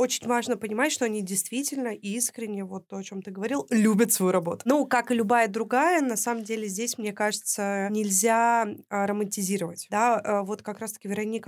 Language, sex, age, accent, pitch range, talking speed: Russian, female, 20-39, native, 195-240 Hz, 175 wpm